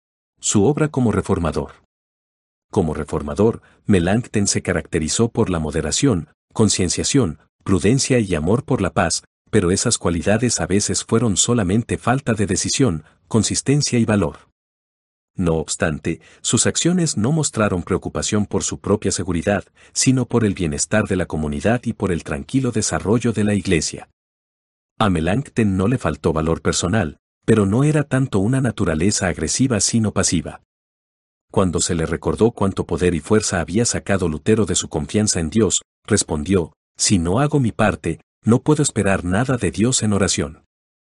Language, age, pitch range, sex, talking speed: Spanish, 50-69, 85-115 Hz, male, 150 wpm